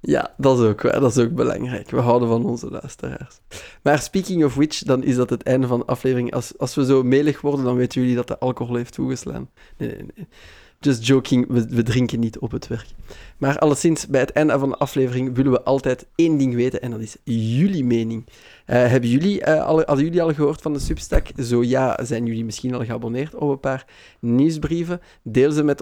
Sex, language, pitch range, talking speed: male, Dutch, 120-145 Hz, 225 wpm